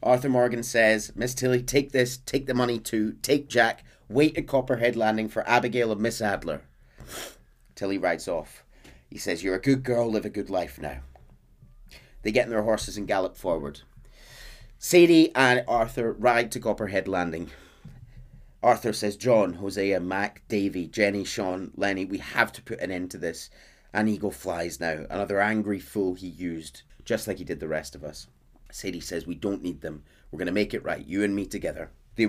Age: 30-49